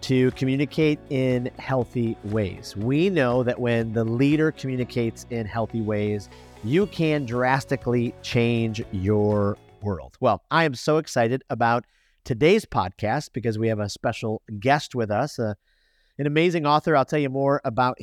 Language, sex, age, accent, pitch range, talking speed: English, male, 40-59, American, 110-150 Hz, 155 wpm